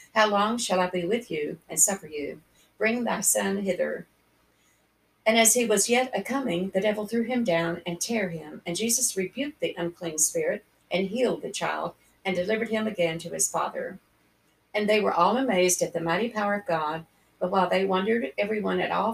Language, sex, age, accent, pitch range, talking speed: English, female, 60-79, American, 175-225 Hz, 205 wpm